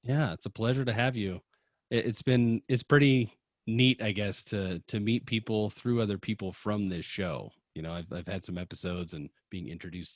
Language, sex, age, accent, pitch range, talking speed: English, male, 30-49, American, 90-125 Hz, 200 wpm